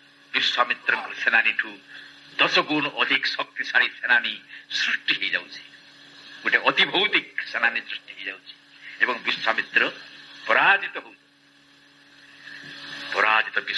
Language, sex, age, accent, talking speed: English, male, 60-79, Indian, 65 wpm